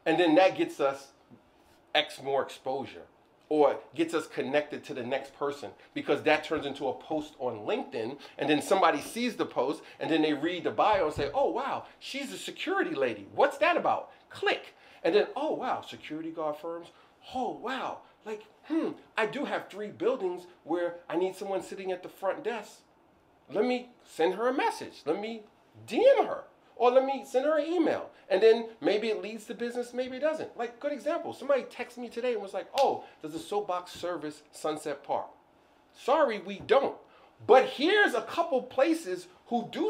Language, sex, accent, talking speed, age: English, male, American, 190 wpm, 40-59